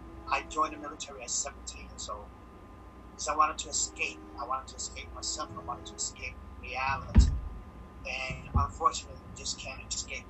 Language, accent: English, American